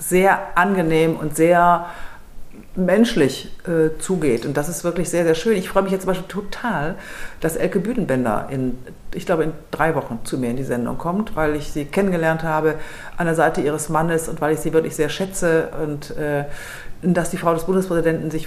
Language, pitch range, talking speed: German, 155-185 Hz, 200 wpm